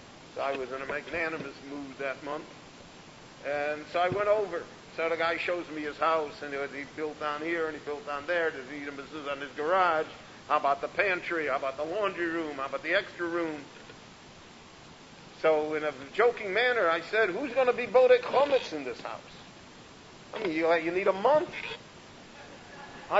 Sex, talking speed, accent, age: male, 200 wpm, American, 50-69